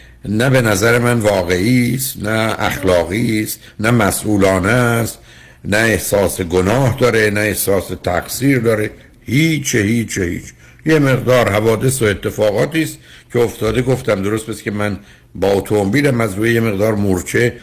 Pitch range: 100-125 Hz